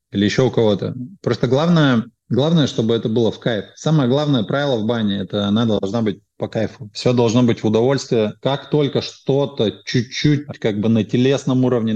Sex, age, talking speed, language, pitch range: male, 20-39, 185 wpm, Russian, 110-135 Hz